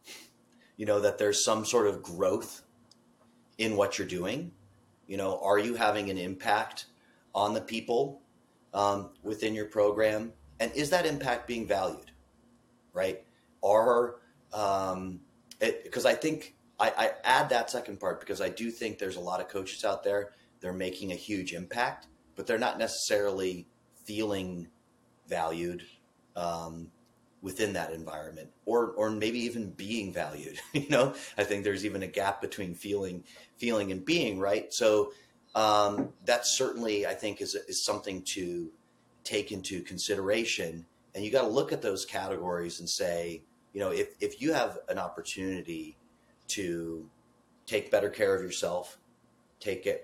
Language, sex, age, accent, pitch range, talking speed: English, male, 30-49, American, 90-120 Hz, 155 wpm